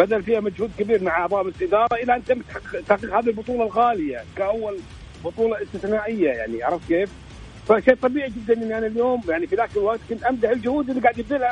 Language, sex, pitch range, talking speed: English, male, 200-255 Hz, 195 wpm